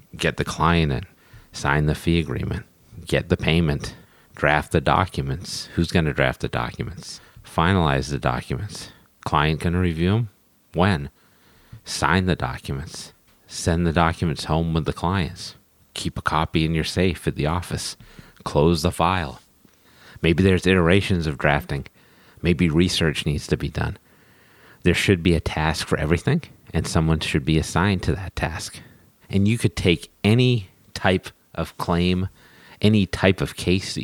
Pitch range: 75-95 Hz